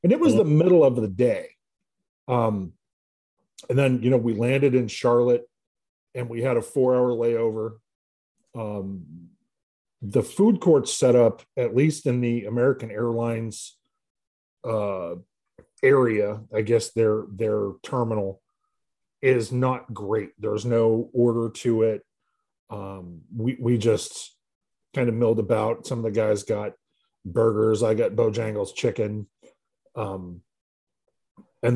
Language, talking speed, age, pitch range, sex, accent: English, 130 wpm, 40-59, 110-140 Hz, male, American